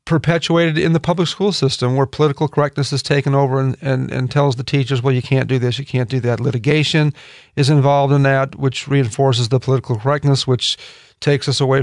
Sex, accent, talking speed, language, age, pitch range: male, American, 210 wpm, English, 40-59, 135-175 Hz